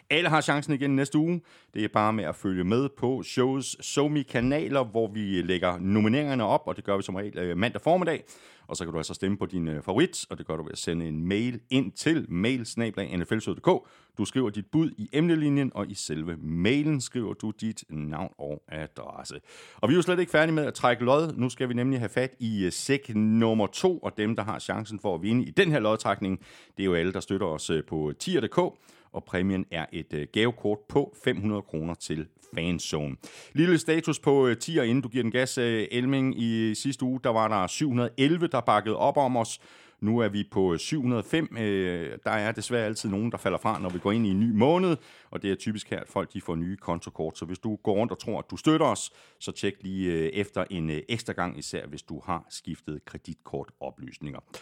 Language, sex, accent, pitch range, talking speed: Danish, male, native, 90-130 Hz, 220 wpm